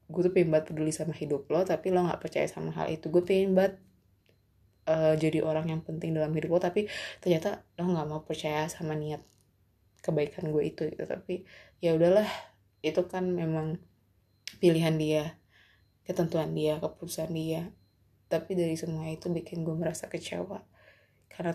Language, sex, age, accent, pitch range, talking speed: Indonesian, female, 20-39, native, 150-180 Hz, 155 wpm